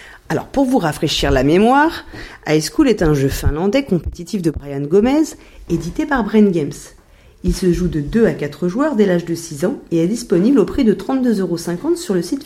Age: 40-59